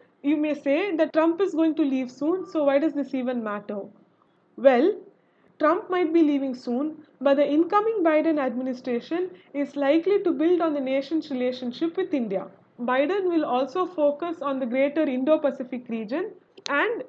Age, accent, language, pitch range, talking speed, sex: 20-39, Indian, English, 260-325 Hz, 165 wpm, female